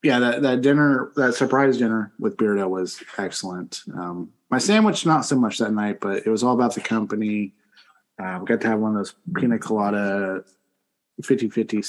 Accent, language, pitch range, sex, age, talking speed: American, English, 105-140 Hz, male, 20-39, 185 wpm